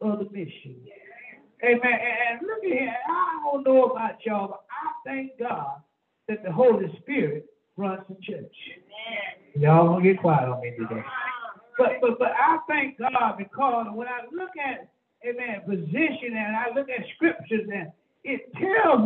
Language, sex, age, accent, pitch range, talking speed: English, male, 60-79, American, 210-275 Hz, 165 wpm